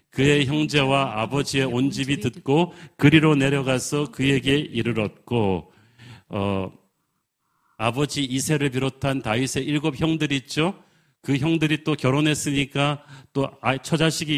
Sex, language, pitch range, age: male, Korean, 125-155 Hz, 40-59